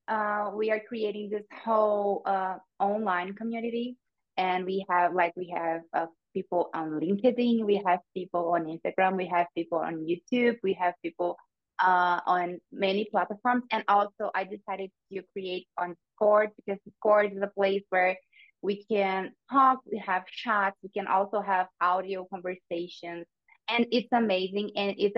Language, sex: English, female